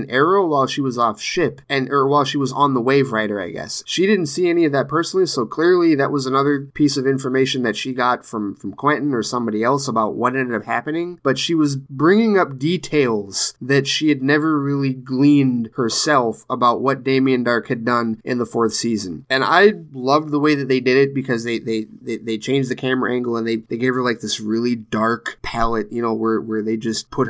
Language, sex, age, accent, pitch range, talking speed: English, male, 20-39, American, 120-155 Hz, 230 wpm